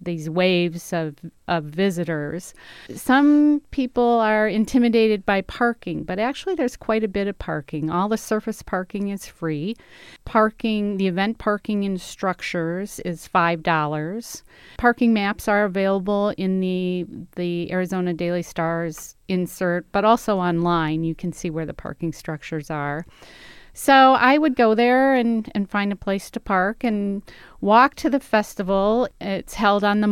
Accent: American